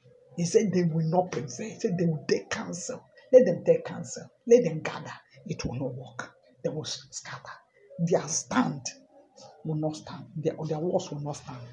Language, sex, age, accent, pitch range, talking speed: English, male, 50-69, Nigerian, 145-180 Hz, 190 wpm